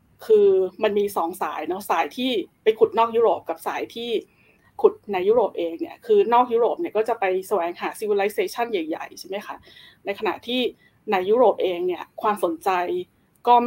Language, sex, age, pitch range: Thai, female, 20-39, 200-330 Hz